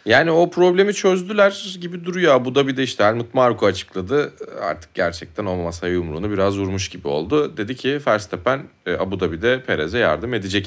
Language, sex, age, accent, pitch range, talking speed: Turkish, male, 30-49, native, 95-130 Hz, 170 wpm